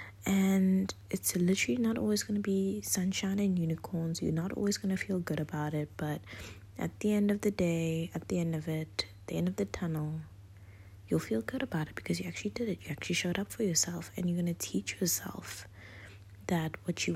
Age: 20-39